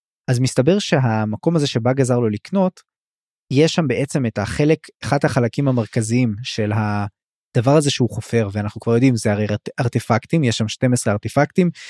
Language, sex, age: Hebrew, male, 20-39